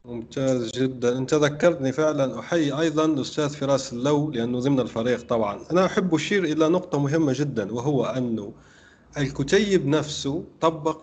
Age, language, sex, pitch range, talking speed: 30-49, Arabic, male, 120-150 Hz, 140 wpm